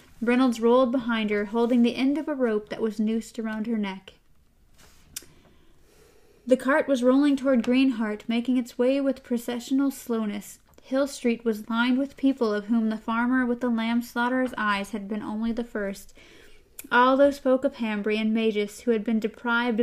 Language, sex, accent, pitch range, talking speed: English, female, American, 215-250 Hz, 180 wpm